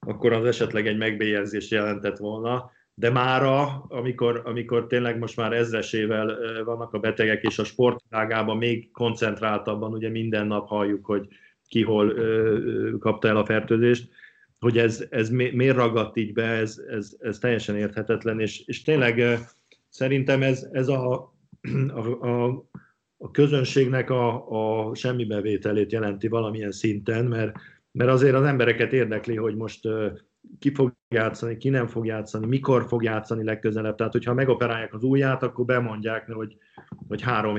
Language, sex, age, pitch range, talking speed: Hungarian, male, 50-69, 105-120 Hz, 145 wpm